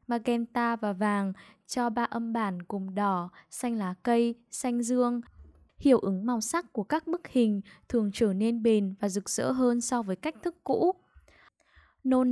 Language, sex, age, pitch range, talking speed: Vietnamese, female, 10-29, 205-245 Hz, 175 wpm